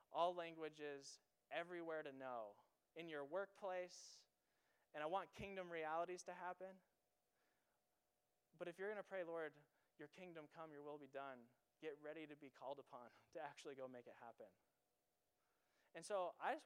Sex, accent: male, American